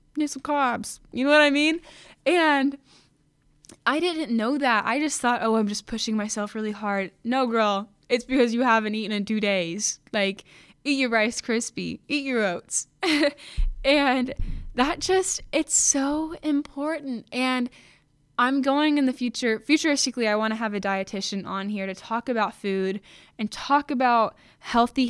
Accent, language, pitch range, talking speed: American, English, 200-255 Hz, 165 wpm